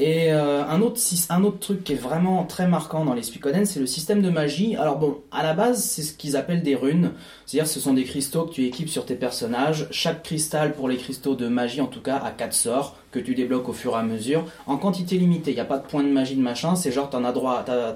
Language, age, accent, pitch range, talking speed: French, 30-49, French, 130-180 Hz, 275 wpm